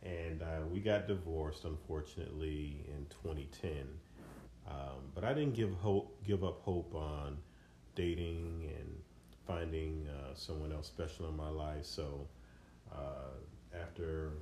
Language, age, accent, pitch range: English, 40-59, American, 70-85 Hz